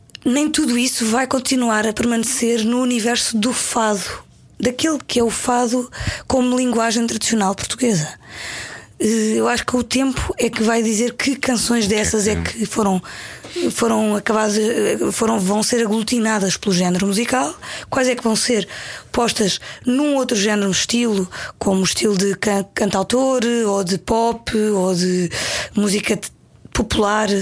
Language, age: Portuguese, 20-39